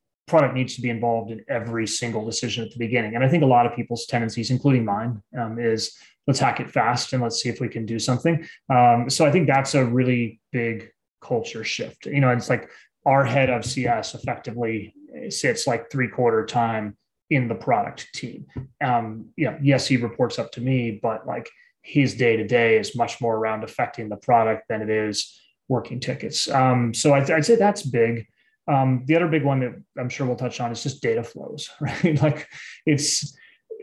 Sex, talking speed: male, 210 wpm